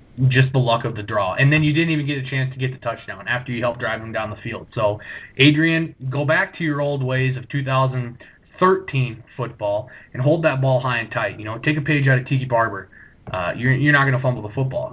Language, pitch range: English, 115-135 Hz